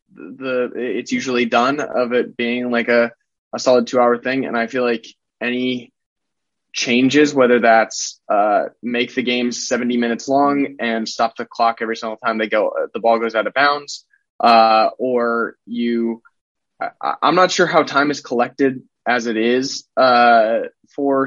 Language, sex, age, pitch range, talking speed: English, male, 20-39, 115-140 Hz, 165 wpm